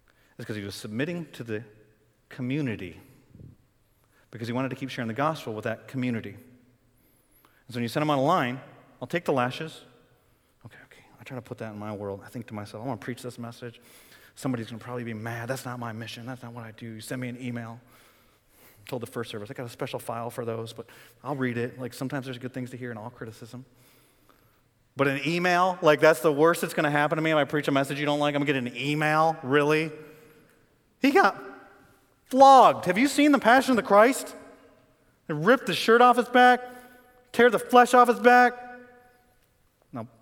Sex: male